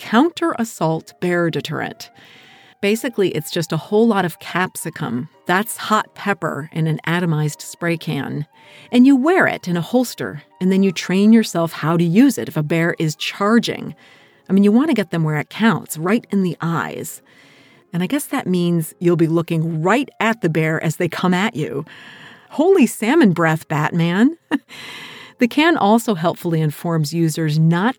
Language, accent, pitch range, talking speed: English, American, 160-225 Hz, 175 wpm